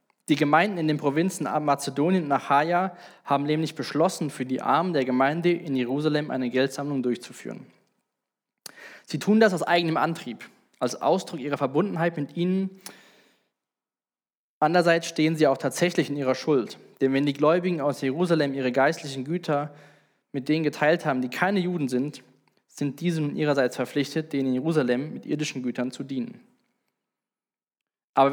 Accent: German